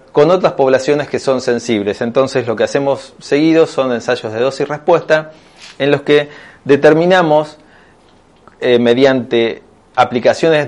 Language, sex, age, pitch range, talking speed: Spanish, male, 30-49, 120-150 Hz, 125 wpm